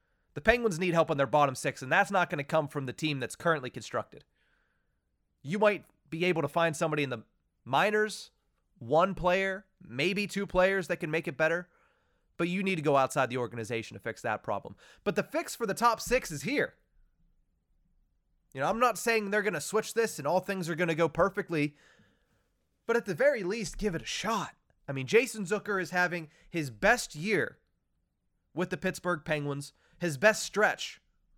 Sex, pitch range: male, 155-200 Hz